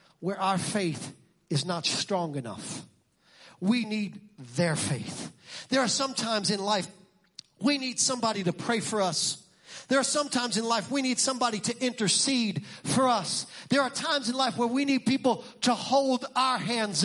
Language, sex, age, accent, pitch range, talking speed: English, male, 40-59, American, 180-250 Hz, 175 wpm